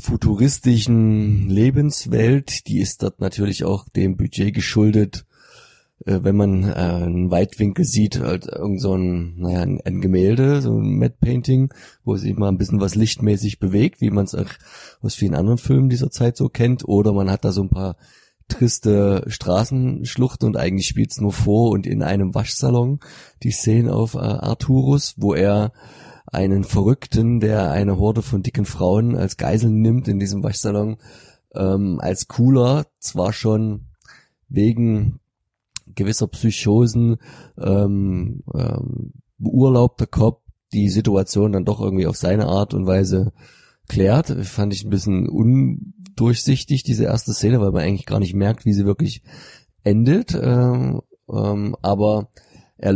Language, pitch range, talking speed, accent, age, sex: German, 100-125 Hz, 150 wpm, German, 30-49, male